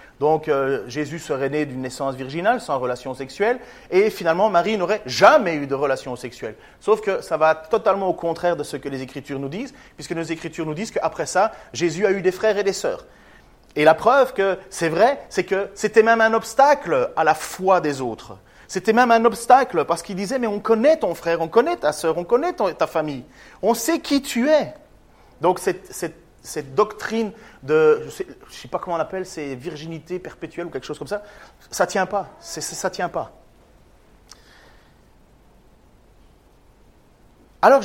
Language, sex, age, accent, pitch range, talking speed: French, male, 30-49, French, 155-225 Hz, 190 wpm